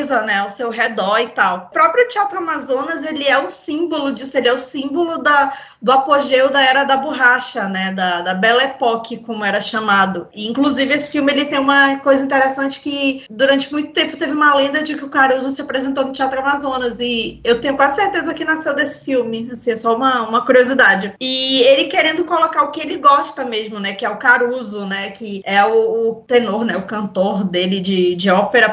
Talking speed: 215 wpm